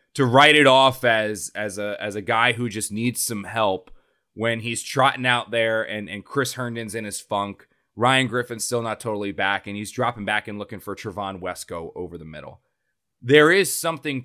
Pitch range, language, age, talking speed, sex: 100-130 Hz, English, 20-39, 200 wpm, male